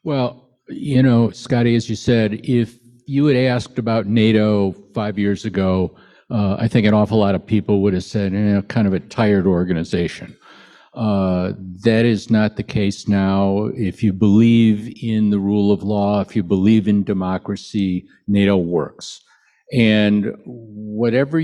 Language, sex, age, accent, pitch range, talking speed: English, male, 60-79, American, 100-115 Hz, 160 wpm